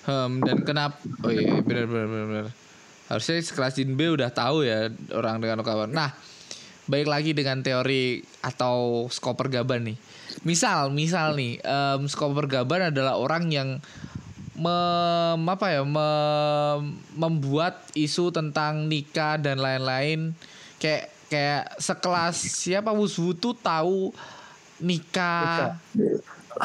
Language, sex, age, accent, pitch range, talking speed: Indonesian, male, 20-39, native, 135-180 Hz, 110 wpm